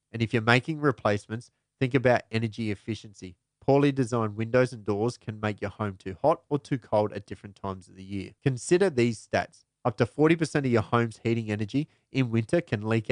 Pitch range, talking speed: 105-130 Hz, 200 wpm